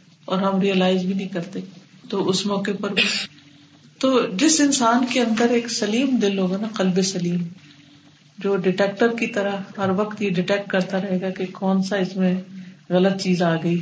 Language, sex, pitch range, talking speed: Urdu, female, 175-200 Hz, 105 wpm